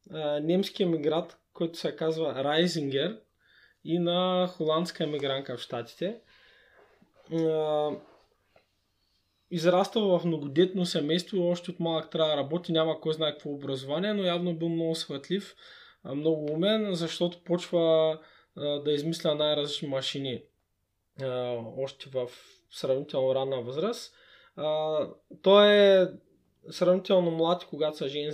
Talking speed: 110 wpm